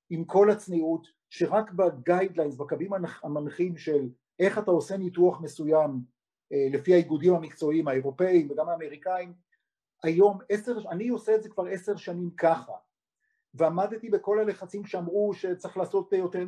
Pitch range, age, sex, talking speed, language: 155-190 Hz, 50-69, male, 130 wpm, Hebrew